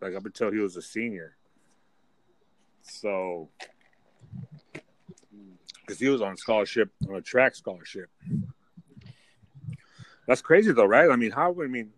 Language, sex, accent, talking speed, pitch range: English, male, American, 135 wpm, 95-115 Hz